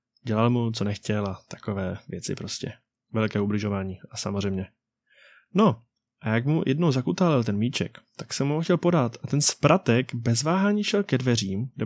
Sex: male